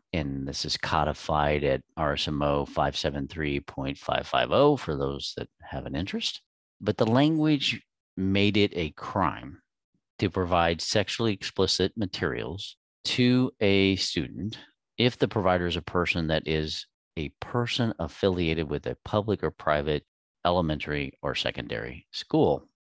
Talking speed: 125 wpm